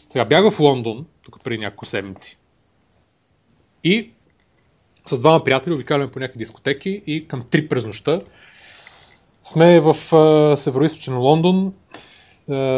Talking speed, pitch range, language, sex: 125 wpm, 115-155 Hz, Bulgarian, male